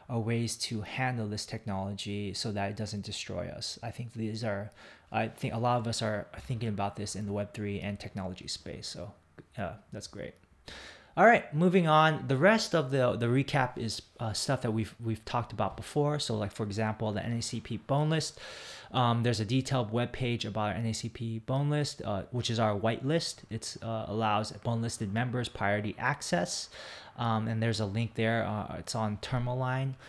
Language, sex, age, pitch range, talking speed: English, male, 20-39, 105-125 Hz, 195 wpm